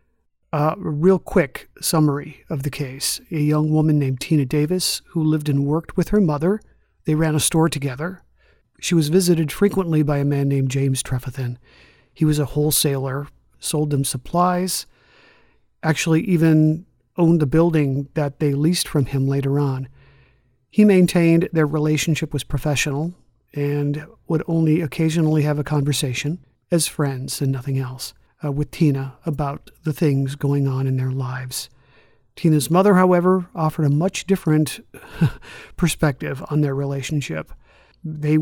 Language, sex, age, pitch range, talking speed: English, male, 50-69, 140-165 Hz, 145 wpm